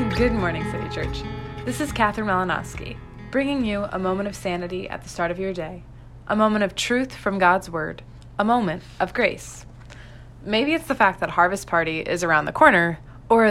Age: 20-39